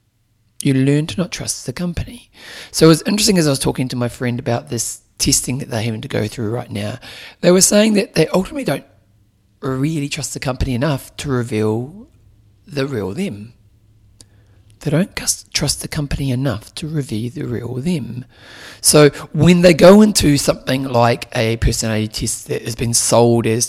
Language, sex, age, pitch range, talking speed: English, male, 30-49, 110-145 Hz, 180 wpm